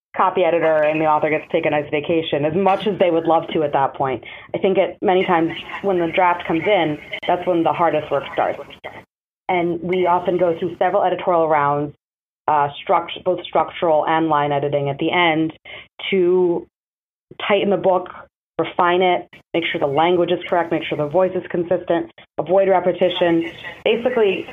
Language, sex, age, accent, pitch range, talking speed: English, female, 30-49, American, 160-190 Hz, 185 wpm